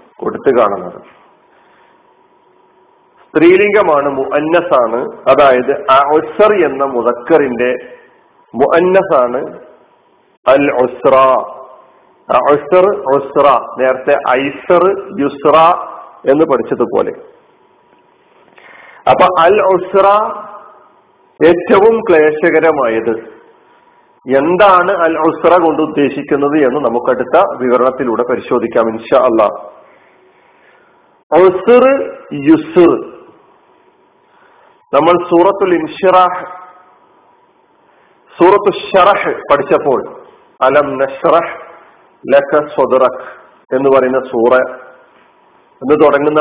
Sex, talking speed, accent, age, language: male, 45 wpm, native, 50-69, Malayalam